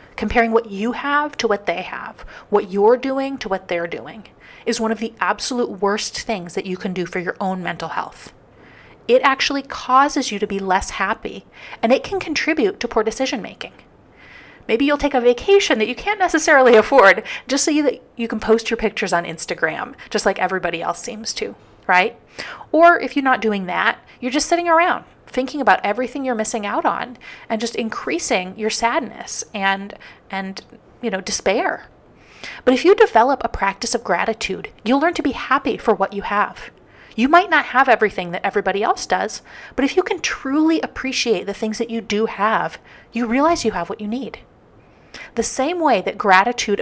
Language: English